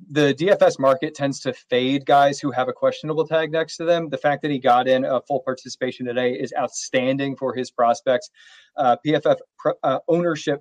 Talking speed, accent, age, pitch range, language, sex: 200 wpm, American, 30-49, 135-155 Hz, English, male